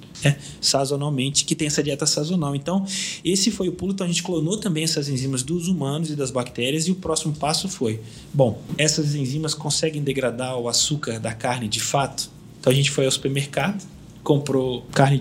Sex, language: male, Portuguese